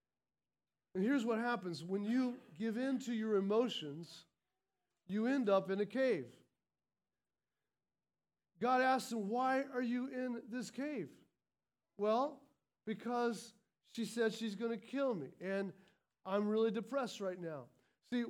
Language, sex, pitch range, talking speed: English, male, 225-265 Hz, 140 wpm